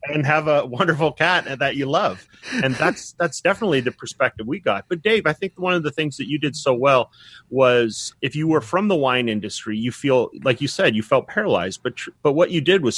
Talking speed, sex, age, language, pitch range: 240 wpm, male, 30-49, English, 110-145 Hz